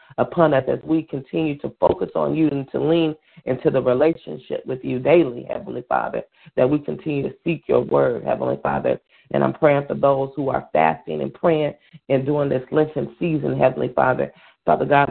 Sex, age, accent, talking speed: female, 40-59, American, 190 wpm